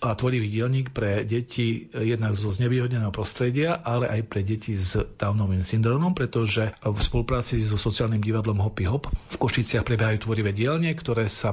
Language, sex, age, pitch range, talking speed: Slovak, male, 40-59, 110-120 Hz, 160 wpm